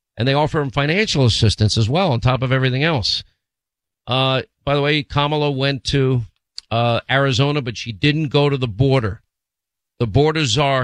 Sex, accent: male, American